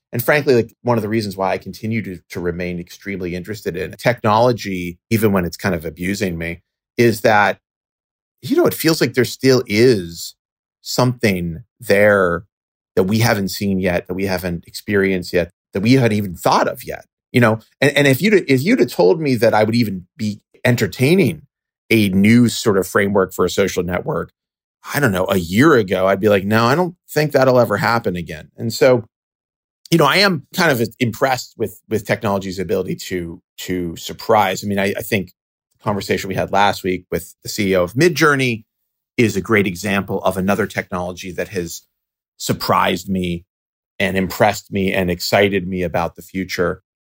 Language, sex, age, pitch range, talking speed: English, male, 30-49, 90-120 Hz, 190 wpm